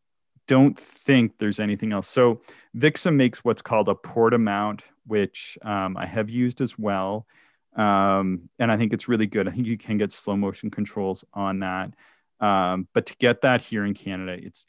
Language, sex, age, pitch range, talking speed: English, male, 30-49, 95-125 Hz, 190 wpm